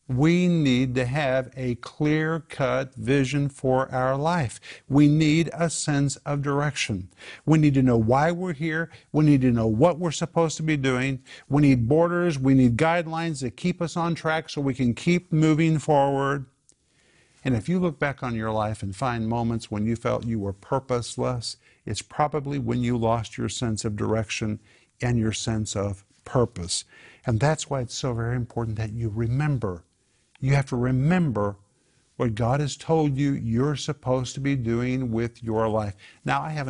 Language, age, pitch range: English, 50-69, 115-145 Hz